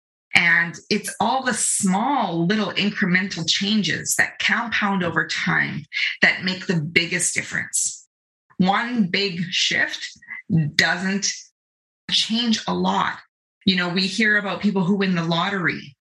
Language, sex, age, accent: English, female, 30-49, American